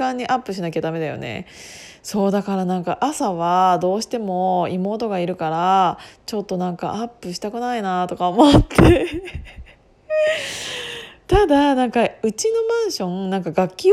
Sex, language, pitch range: female, Japanese, 185-305 Hz